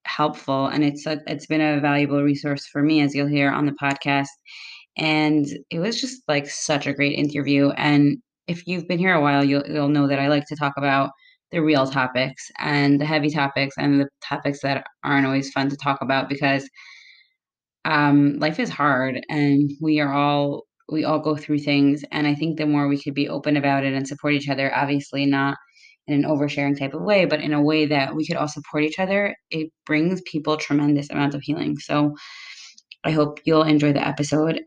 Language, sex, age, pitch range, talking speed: English, female, 20-39, 140-155 Hz, 210 wpm